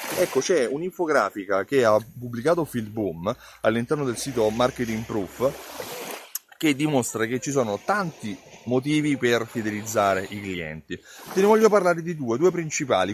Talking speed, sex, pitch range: 145 wpm, male, 120-160 Hz